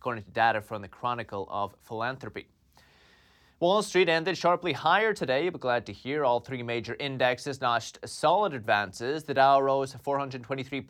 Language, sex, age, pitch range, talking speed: English, male, 30-49, 120-175 Hz, 160 wpm